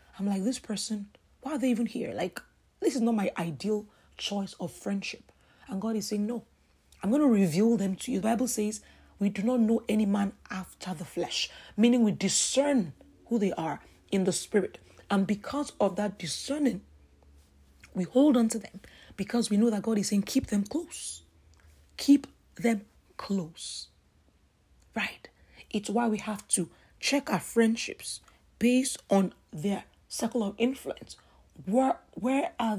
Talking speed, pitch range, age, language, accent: 170 wpm, 170-235 Hz, 40-59, English, Nigerian